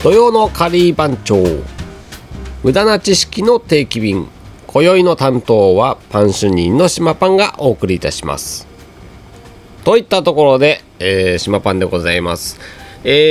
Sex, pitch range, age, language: male, 95-140 Hz, 40-59, Japanese